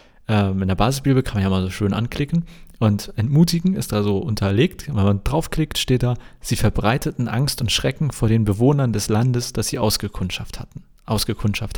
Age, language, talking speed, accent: 40-59, German, 180 wpm, German